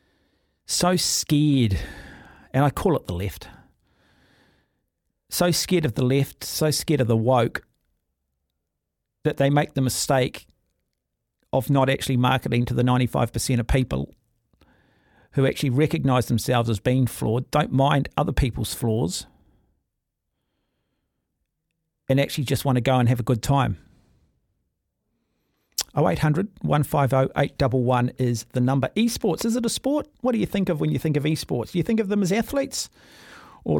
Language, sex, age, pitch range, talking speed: English, male, 40-59, 120-155 Hz, 145 wpm